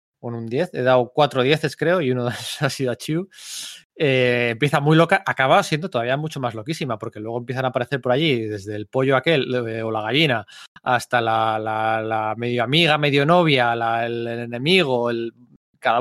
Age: 20-39